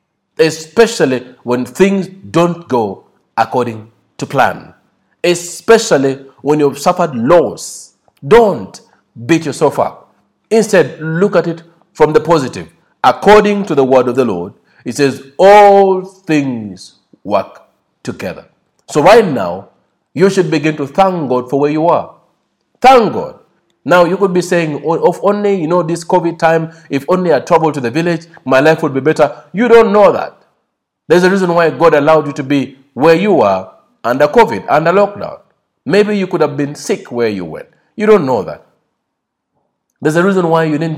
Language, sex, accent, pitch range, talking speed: English, male, South African, 135-180 Hz, 170 wpm